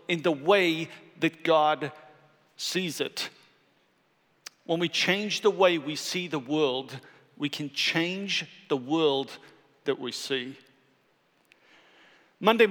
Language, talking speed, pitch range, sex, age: English, 120 wpm, 175-220 Hz, male, 50-69